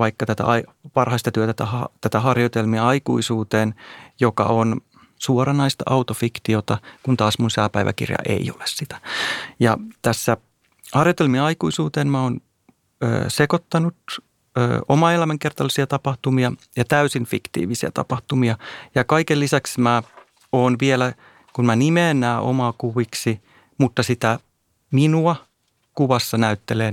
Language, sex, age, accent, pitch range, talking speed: Finnish, male, 30-49, native, 115-140 Hz, 105 wpm